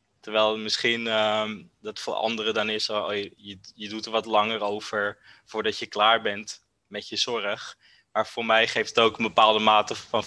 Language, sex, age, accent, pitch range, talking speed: Dutch, male, 20-39, Dutch, 100-110 Hz, 195 wpm